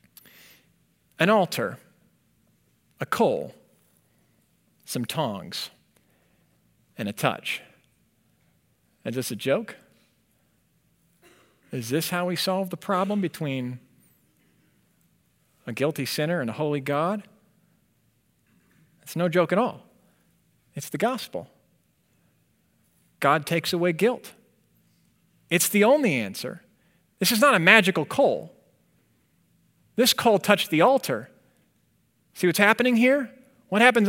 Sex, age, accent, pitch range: male, 40-59, American, 150-205 Hz